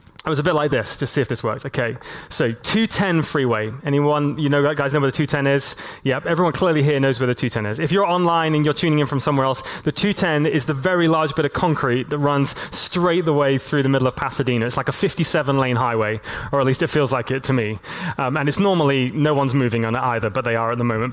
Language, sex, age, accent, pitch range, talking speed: English, male, 20-39, British, 125-160 Hz, 260 wpm